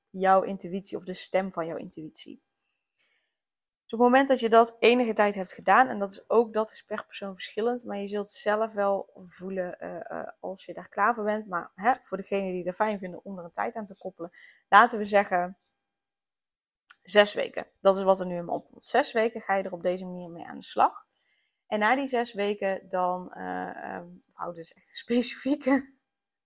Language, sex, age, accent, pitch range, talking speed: Dutch, female, 20-39, Dutch, 190-245 Hz, 220 wpm